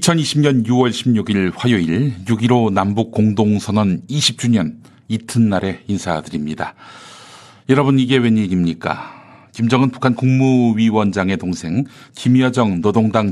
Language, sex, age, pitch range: Korean, male, 50-69, 95-130 Hz